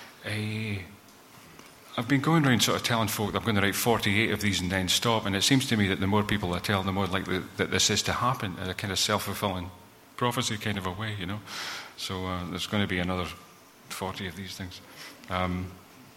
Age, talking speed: 40-59, 230 wpm